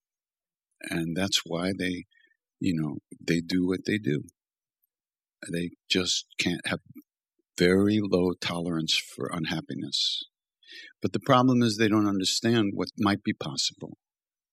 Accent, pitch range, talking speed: American, 90-115 Hz, 130 wpm